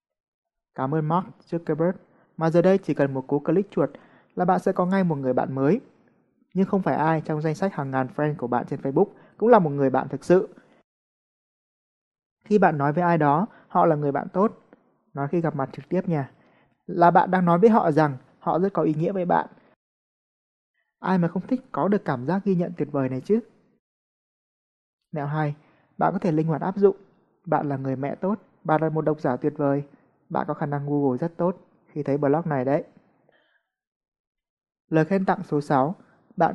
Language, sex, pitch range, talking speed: Vietnamese, male, 145-180 Hz, 210 wpm